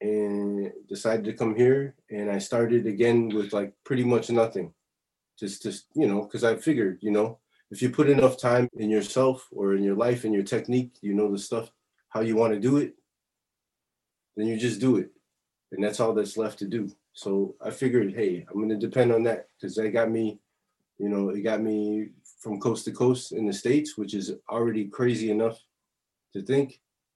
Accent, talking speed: American, 205 wpm